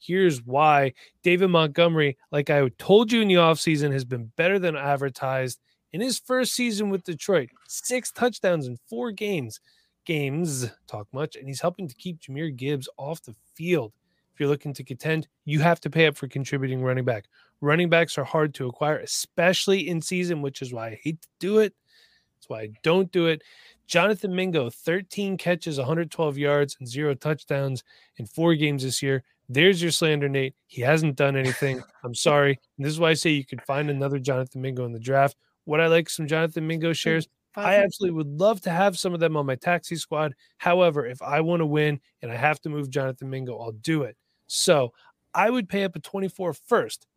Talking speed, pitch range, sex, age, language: 205 wpm, 135-175 Hz, male, 20-39, English